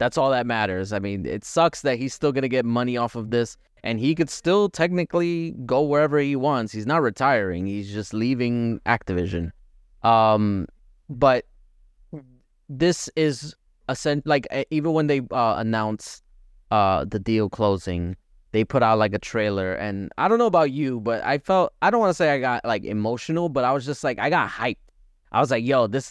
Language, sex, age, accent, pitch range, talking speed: English, male, 20-39, American, 100-140 Hz, 200 wpm